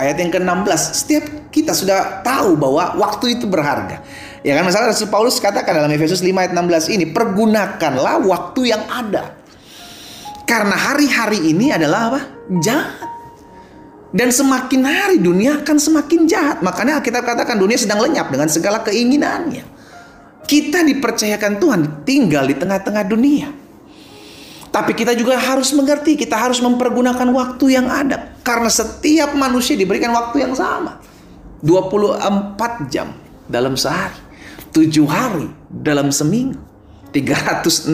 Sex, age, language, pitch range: male, 30-49, Indonesian, 165-260 Hz